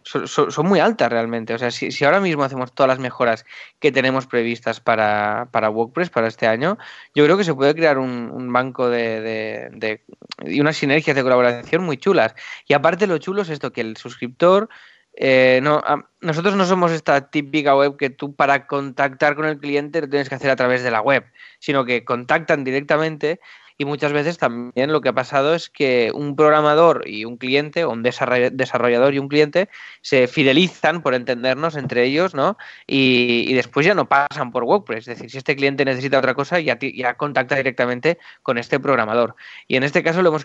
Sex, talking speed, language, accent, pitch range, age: male, 200 wpm, Spanish, Spanish, 125-155 Hz, 20-39